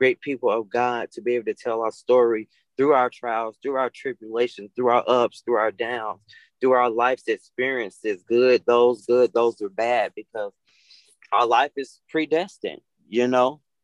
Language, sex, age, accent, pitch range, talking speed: English, male, 20-39, American, 115-135 Hz, 175 wpm